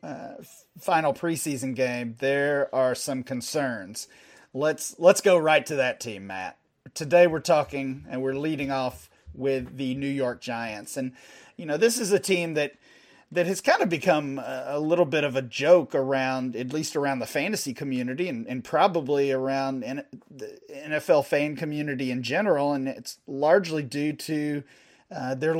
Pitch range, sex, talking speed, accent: 135-175 Hz, male, 170 wpm, American